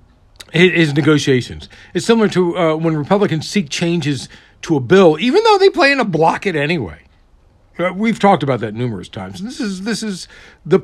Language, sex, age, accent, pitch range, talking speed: English, male, 60-79, American, 120-180 Hz, 175 wpm